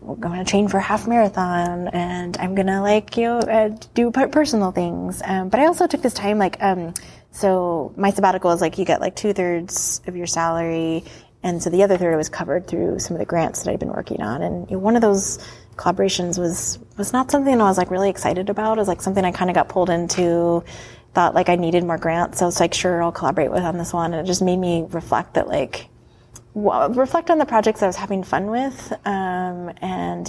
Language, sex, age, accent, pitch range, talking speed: English, female, 20-39, American, 170-200 Hz, 240 wpm